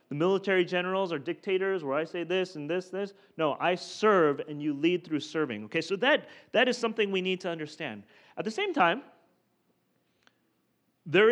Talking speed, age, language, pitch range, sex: 185 wpm, 30-49, English, 130-190 Hz, male